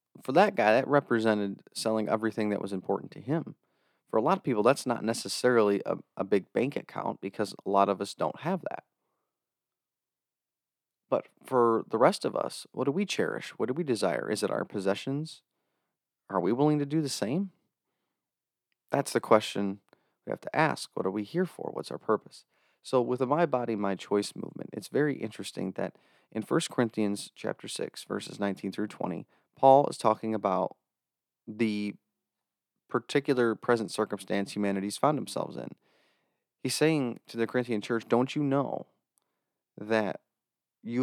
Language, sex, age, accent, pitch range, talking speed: English, male, 30-49, American, 100-130 Hz, 170 wpm